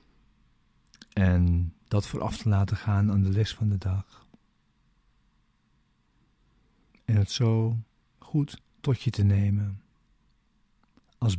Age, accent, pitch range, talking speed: 50-69, Dutch, 95-115 Hz, 110 wpm